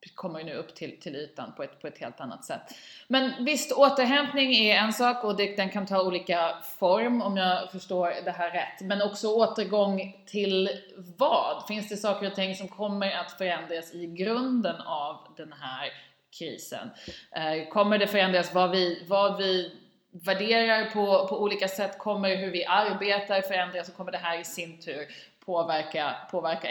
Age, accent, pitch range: 30-49, native, 175-210 Hz